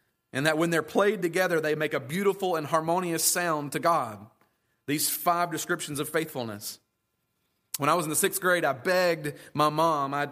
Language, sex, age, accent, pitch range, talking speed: English, male, 30-49, American, 140-180 Hz, 185 wpm